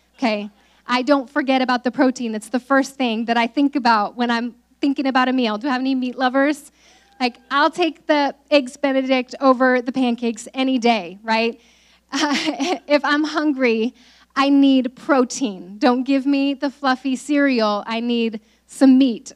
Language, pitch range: English, 235-285 Hz